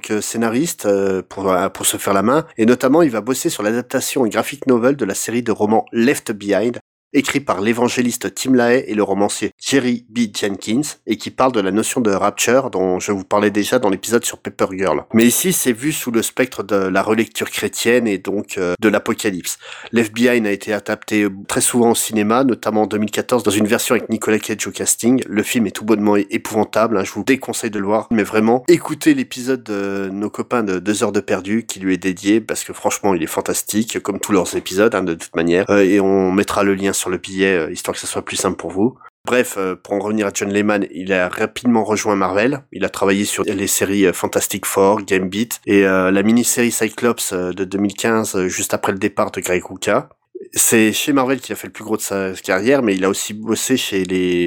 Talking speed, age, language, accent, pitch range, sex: 220 wpm, 30-49, French, French, 100-120 Hz, male